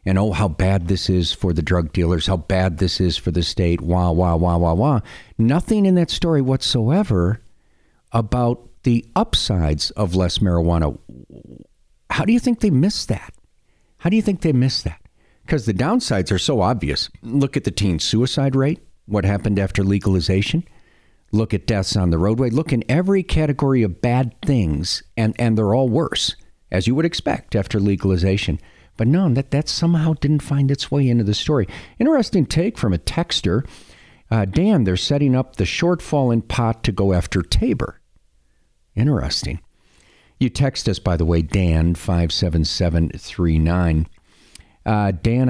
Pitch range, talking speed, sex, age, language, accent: 90-120 Hz, 165 wpm, male, 50-69, English, American